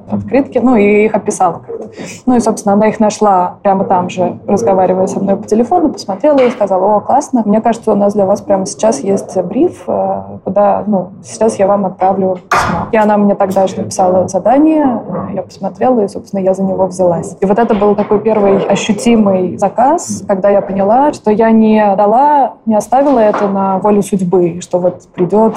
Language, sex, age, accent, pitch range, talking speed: Russian, female, 20-39, native, 185-215 Hz, 190 wpm